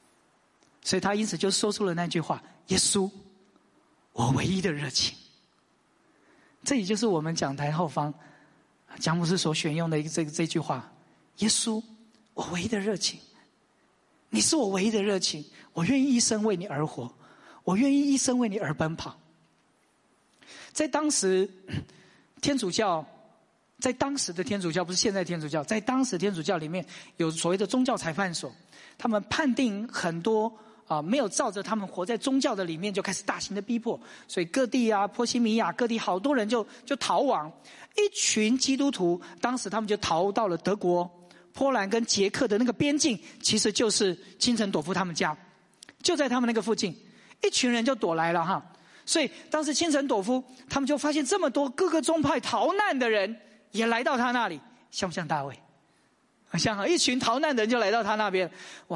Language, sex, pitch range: English, male, 180-250 Hz